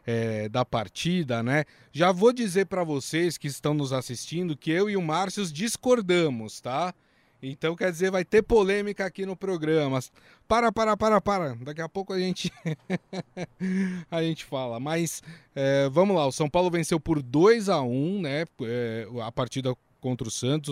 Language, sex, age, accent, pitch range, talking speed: Portuguese, male, 20-39, Brazilian, 130-180 Hz, 175 wpm